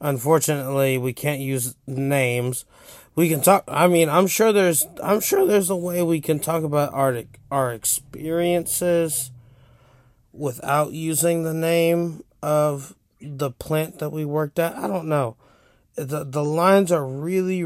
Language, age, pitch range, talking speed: English, 20-39, 125-155 Hz, 150 wpm